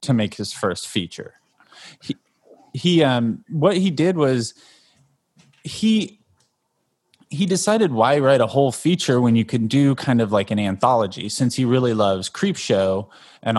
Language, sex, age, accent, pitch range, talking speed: English, male, 20-39, American, 110-145 Hz, 160 wpm